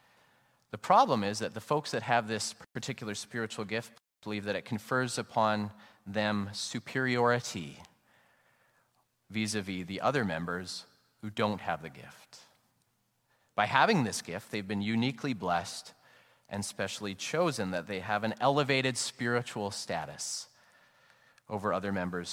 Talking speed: 130 wpm